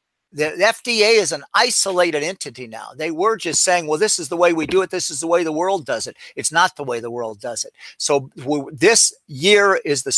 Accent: American